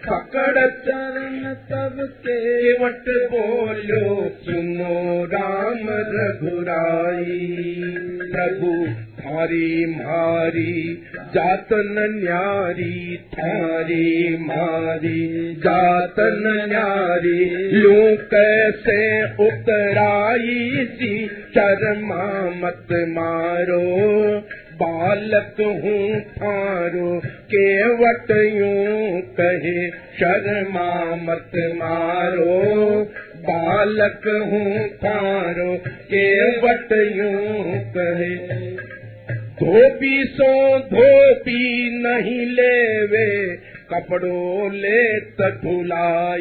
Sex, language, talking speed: male, Hindi, 60 wpm